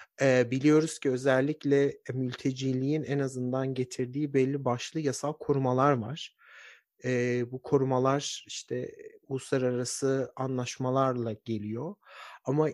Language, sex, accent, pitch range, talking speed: Turkish, male, native, 125-145 Hz, 90 wpm